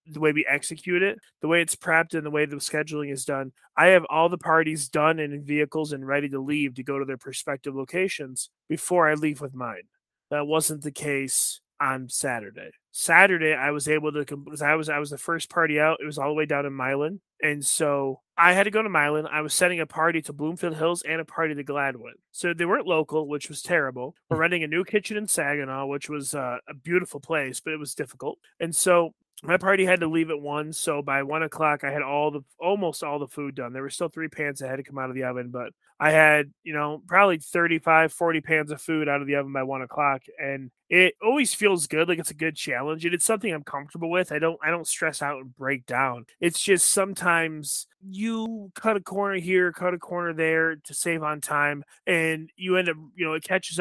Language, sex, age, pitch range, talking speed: English, male, 30-49, 145-170 Hz, 240 wpm